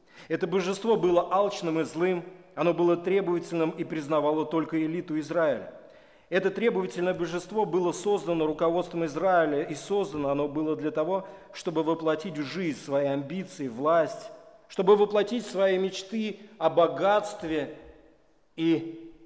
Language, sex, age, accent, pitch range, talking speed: Russian, male, 40-59, native, 150-190 Hz, 130 wpm